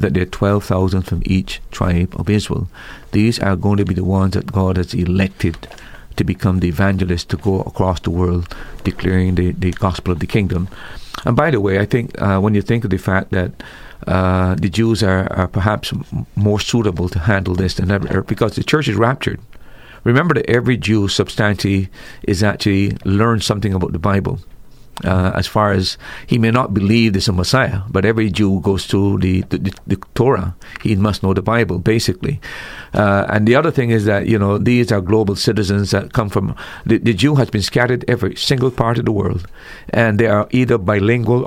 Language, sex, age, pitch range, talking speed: English, male, 50-69, 95-115 Hz, 205 wpm